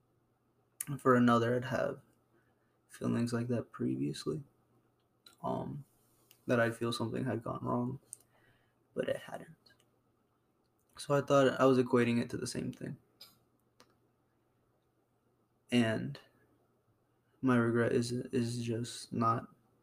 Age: 20-39